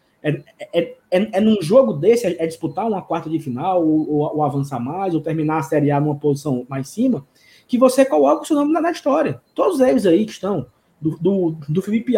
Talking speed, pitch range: 215 wpm, 160-235 Hz